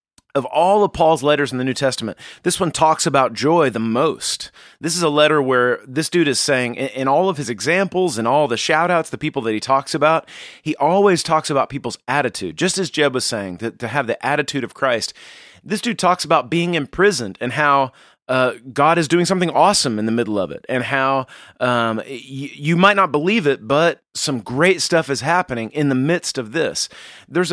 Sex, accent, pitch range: male, American, 125-170 Hz